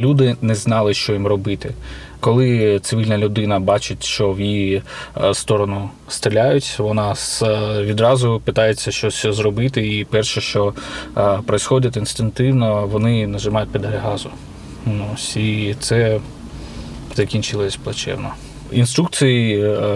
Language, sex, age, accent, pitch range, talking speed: Ukrainian, male, 20-39, native, 105-120 Hz, 105 wpm